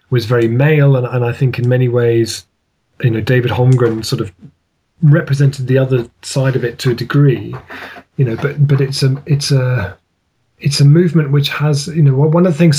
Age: 30-49